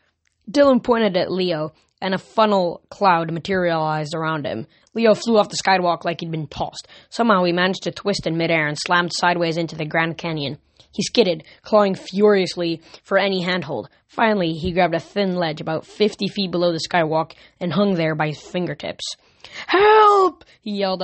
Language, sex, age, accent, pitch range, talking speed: English, female, 10-29, American, 170-230 Hz, 175 wpm